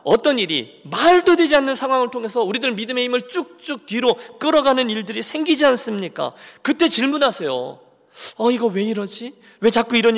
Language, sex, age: Korean, male, 40-59